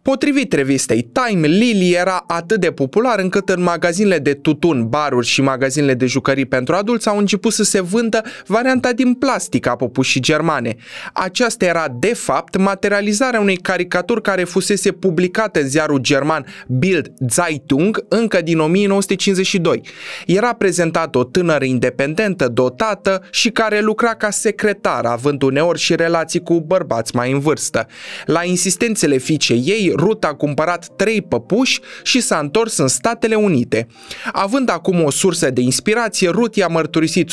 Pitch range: 140-205 Hz